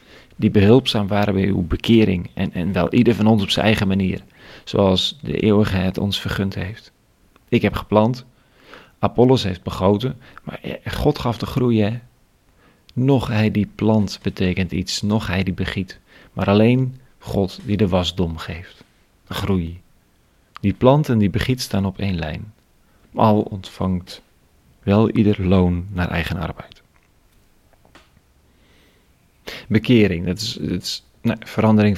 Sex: male